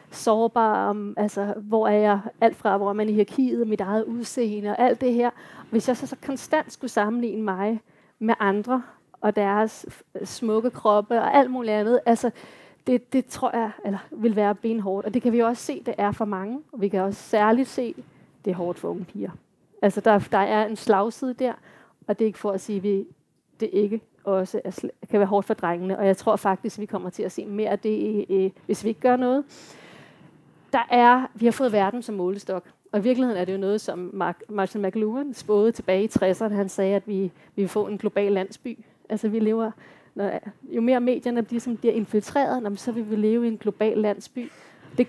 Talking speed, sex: 220 wpm, female